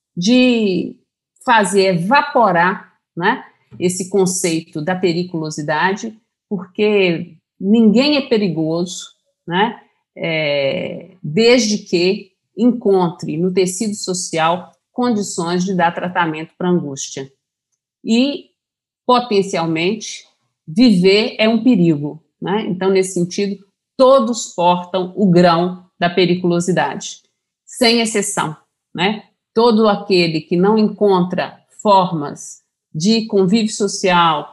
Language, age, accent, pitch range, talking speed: Portuguese, 50-69, Brazilian, 175-215 Hz, 95 wpm